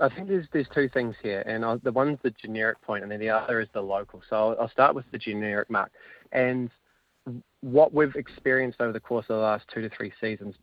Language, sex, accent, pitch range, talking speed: English, male, Australian, 110-125 Hz, 235 wpm